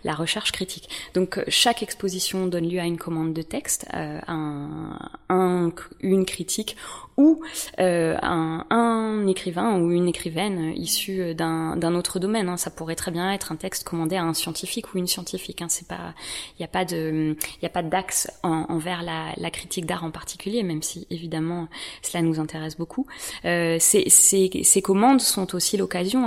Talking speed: 180 wpm